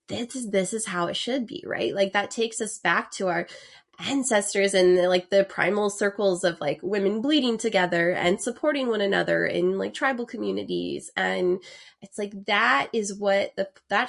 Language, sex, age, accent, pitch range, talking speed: English, female, 20-39, American, 180-235 Hz, 180 wpm